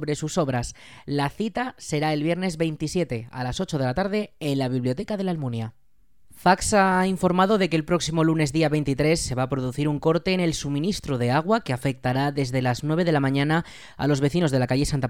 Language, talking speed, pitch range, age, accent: Spanish, 225 wpm, 135-180 Hz, 20-39, Spanish